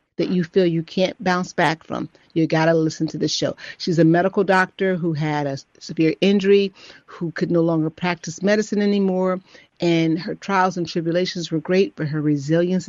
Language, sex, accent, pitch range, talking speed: English, female, American, 165-225 Hz, 185 wpm